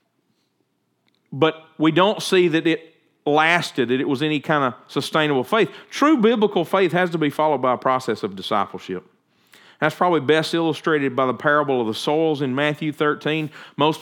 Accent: American